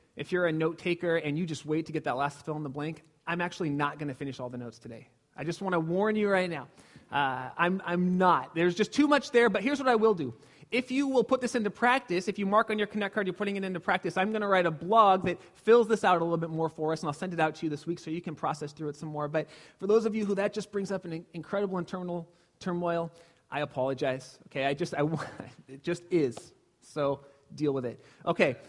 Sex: male